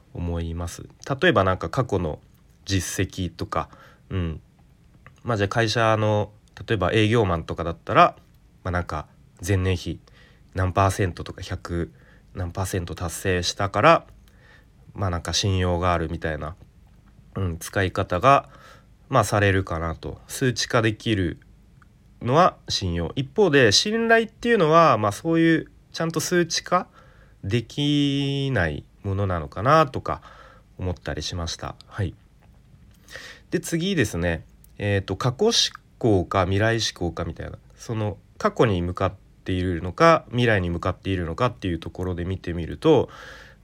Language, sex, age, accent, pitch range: Japanese, male, 30-49, native, 90-130 Hz